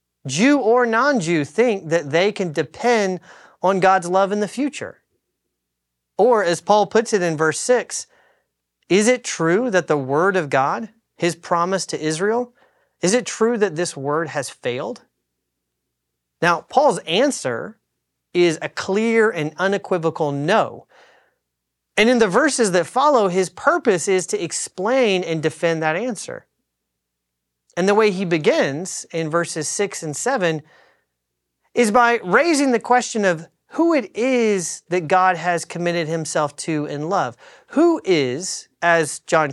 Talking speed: 145 wpm